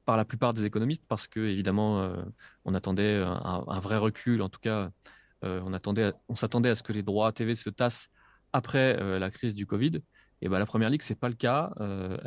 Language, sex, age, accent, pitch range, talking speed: French, male, 20-39, French, 100-125 Hz, 240 wpm